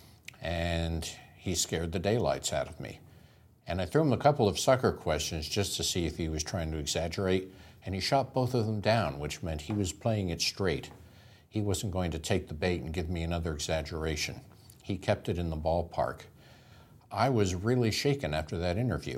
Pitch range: 85-105 Hz